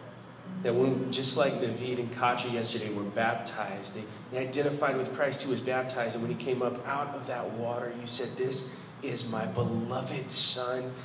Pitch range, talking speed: 100-125 Hz, 185 wpm